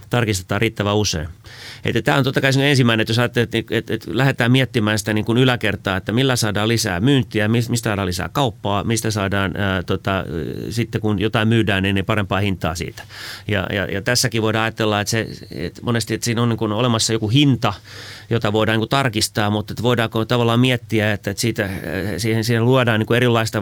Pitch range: 105-115 Hz